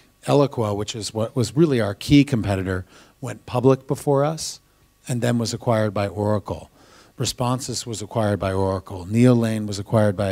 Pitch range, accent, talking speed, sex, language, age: 105-125 Hz, American, 165 wpm, male, English, 40-59